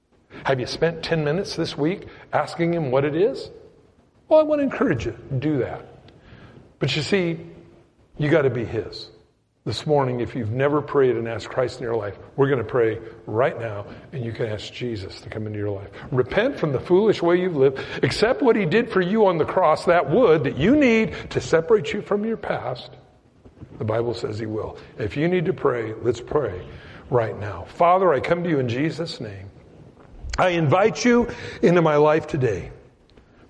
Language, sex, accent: English, male, American